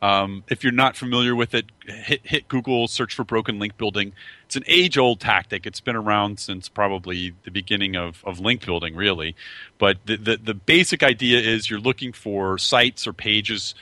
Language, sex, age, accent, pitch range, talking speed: English, male, 40-59, American, 95-120 Hz, 190 wpm